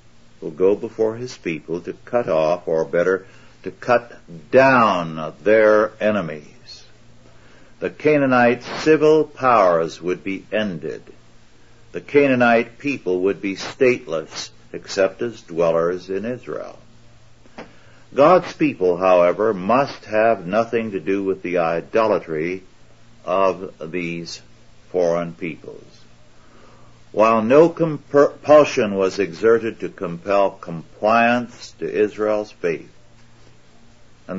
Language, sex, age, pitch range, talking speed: English, male, 60-79, 90-120 Hz, 105 wpm